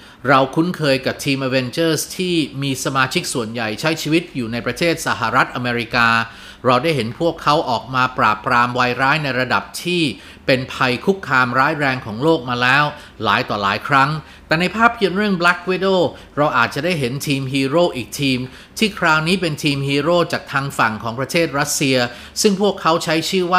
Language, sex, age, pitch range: Thai, male, 30-49, 130-180 Hz